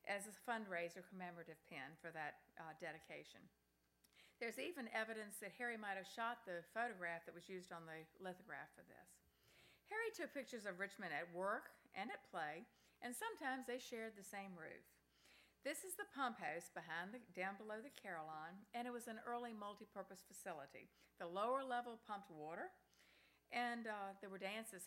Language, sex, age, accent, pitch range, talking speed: English, female, 50-69, American, 175-235 Hz, 175 wpm